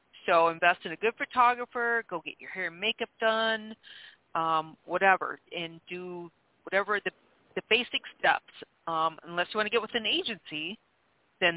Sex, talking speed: female, 165 wpm